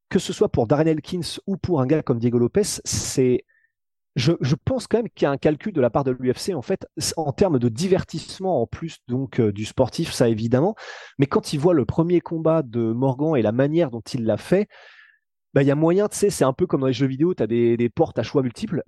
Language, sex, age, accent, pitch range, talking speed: French, male, 30-49, French, 130-175 Hz, 255 wpm